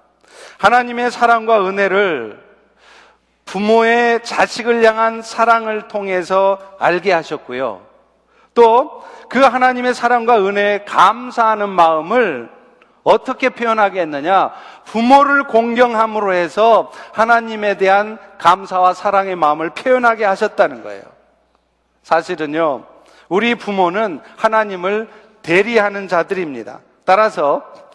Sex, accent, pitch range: male, native, 185-235 Hz